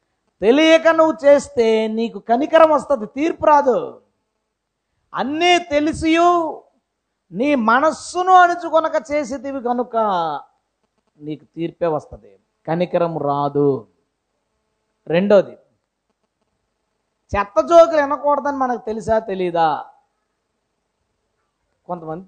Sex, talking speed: female, 75 wpm